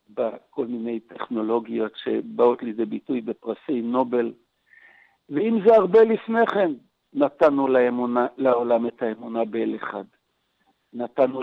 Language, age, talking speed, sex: Hebrew, 60-79, 110 wpm, male